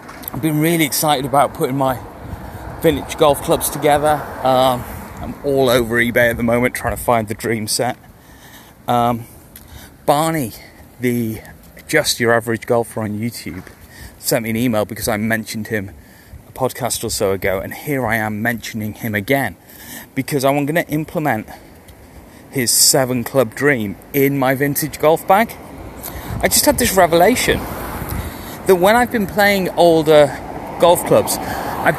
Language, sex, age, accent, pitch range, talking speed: English, male, 30-49, British, 115-175 Hz, 155 wpm